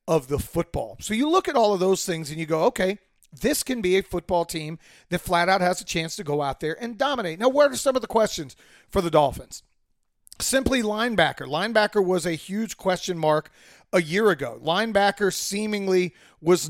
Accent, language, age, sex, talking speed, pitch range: American, English, 30-49, male, 205 wpm, 165-210 Hz